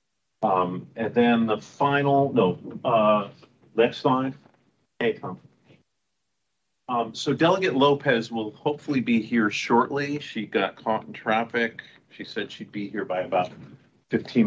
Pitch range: 105-135 Hz